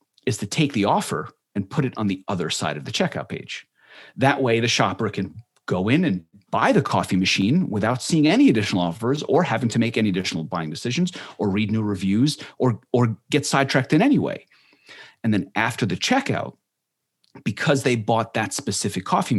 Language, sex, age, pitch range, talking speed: English, male, 40-59, 100-135 Hz, 195 wpm